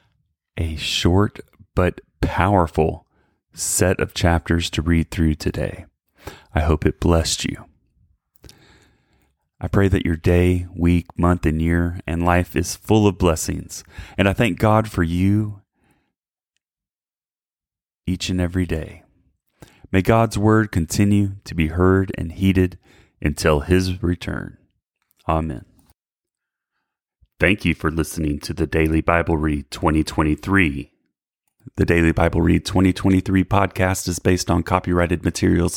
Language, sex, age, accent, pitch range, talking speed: English, male, 30-49, American, 80-95 Hz, 125 wpm